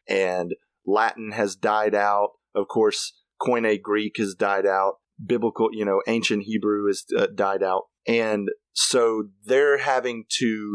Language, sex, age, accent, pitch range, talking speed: English, male, 30-49, American, 105-140 Hz, 145 wpm